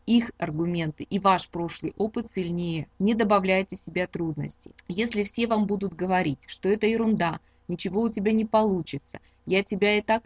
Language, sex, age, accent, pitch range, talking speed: Russian, female, 20-39, native, 175-215 Hz, 170 wpm